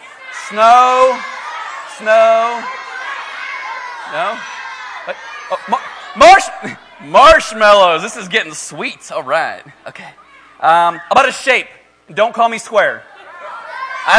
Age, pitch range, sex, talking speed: 30-49, 205-300 Hz, male, 95 wpm